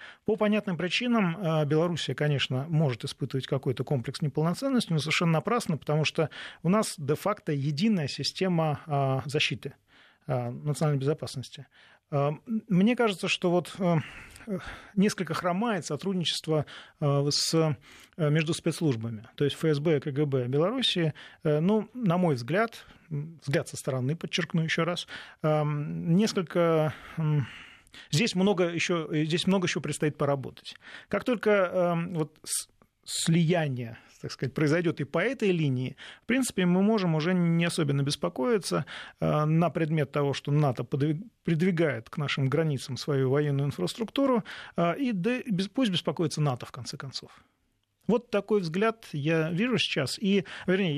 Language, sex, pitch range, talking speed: Russian, male, 145-190 Hz, 120 wpm